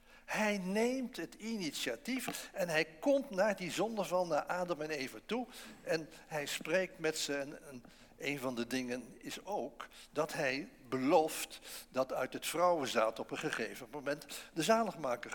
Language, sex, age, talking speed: English, male, 60-79, 155 wpm